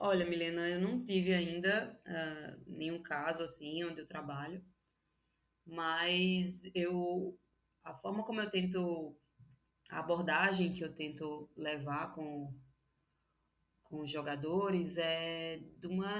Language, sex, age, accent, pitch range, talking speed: Portuguese, female, 20-39, Brazilian, 150-195 Hz, 120 wpm